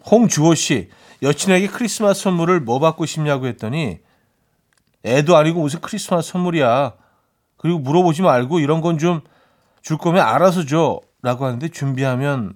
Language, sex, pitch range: Korean, male, 125-175 Hz